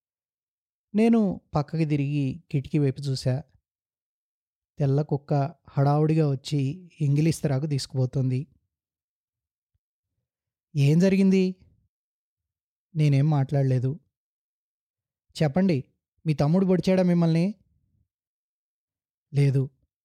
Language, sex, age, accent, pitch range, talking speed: Telugu, male, 20-39, native, 125-160 Hz, 65 wpm